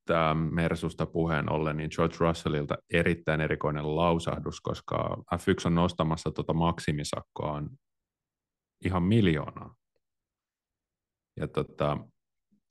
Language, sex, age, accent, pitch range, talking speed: Finnish, male, 30-49, native, 75-90 Hz, 95 wpm